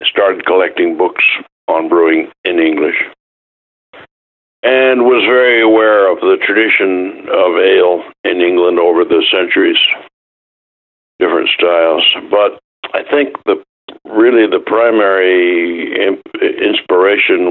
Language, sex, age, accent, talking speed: English, male, 60-79, American, 105 wpm